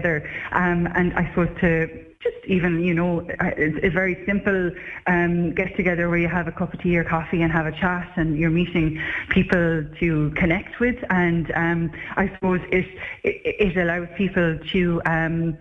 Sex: female